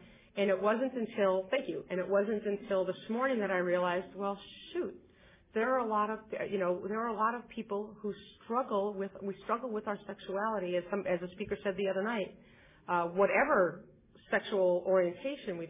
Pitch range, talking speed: 175-210 Hz, 200 wpm